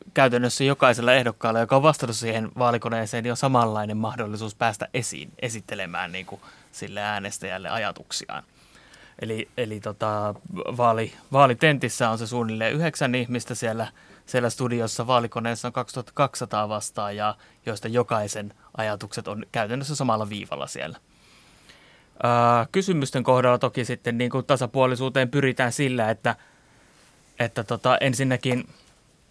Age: 20-39